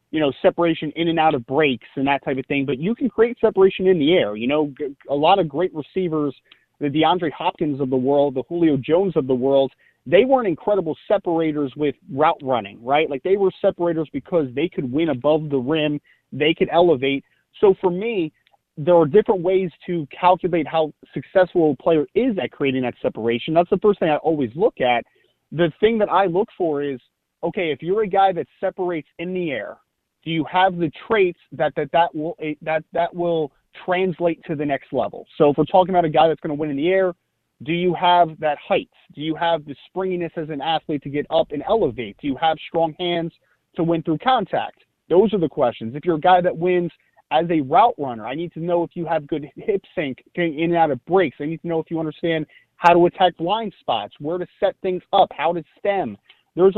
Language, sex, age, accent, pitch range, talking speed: English, male, 30-49, American, 150-180 Hz, 225 wpm